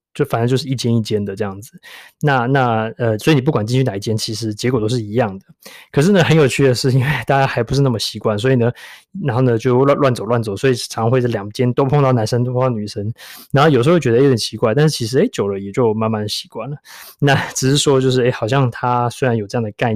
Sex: male